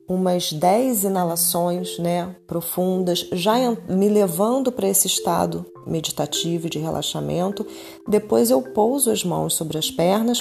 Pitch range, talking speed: 155-205 Hz, 135 wpm